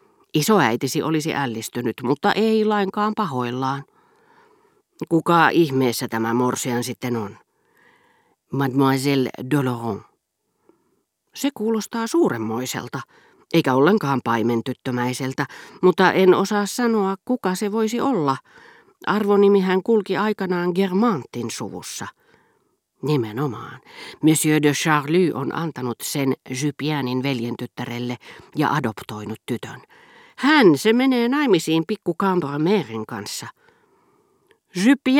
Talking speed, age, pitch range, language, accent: 90 wpm, 40-59, 130-210 Hz, Finnish, native